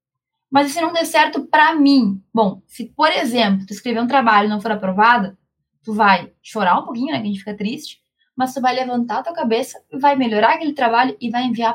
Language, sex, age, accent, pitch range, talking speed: Portuguese, female, 10-29, Brazilian, 205-255 Hz, 230 wpm